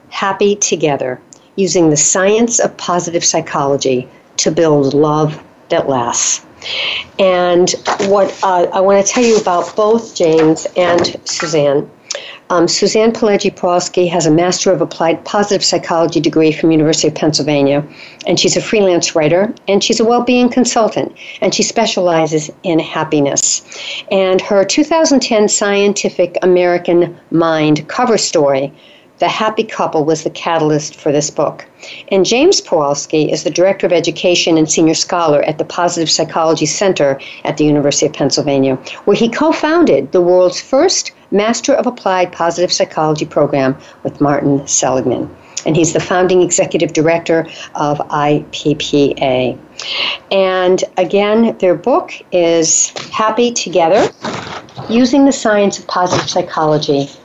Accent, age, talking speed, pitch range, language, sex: American, 60-79, 135 wpm, 155-200 Hz, English, female